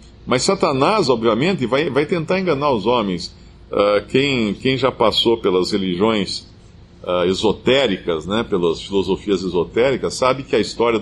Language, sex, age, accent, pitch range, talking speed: Portuguese, male, 50-69, Brazilian, 95-140 Hz, 130 wpm